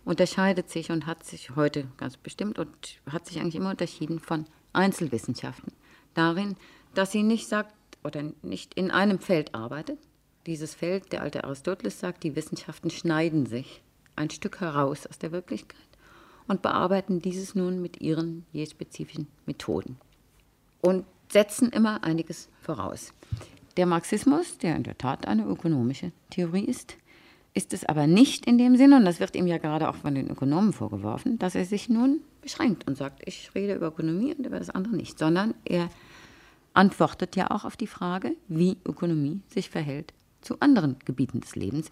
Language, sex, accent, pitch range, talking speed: German, female, German, 155-195 Hz, 170 wpm